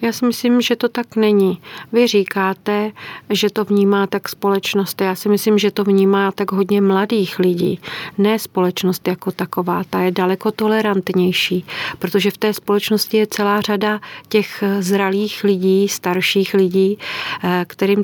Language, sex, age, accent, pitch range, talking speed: Czech, female, 40-59, native, 185-210 Hz, 150 wpm